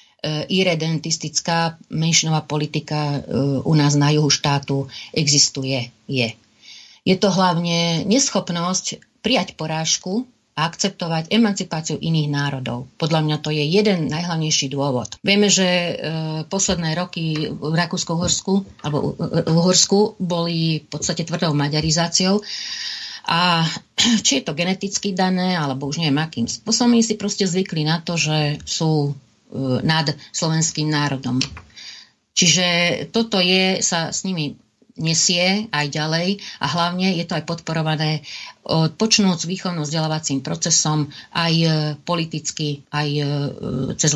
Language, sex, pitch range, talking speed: Slovak, female, 145-185 Hz, 115 wpm